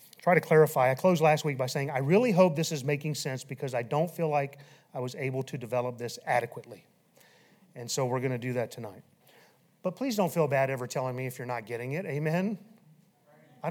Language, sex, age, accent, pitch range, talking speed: English, male, 30-49, American, 130-160 Hz, 225 wpm